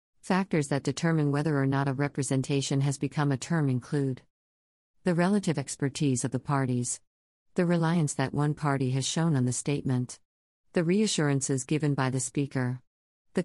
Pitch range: 130-165 Hz